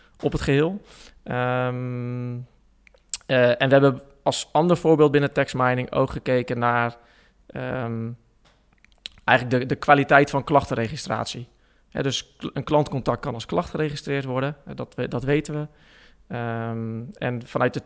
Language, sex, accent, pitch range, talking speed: Dutch, male, Dutch, 125-140 Hz, 140 wpm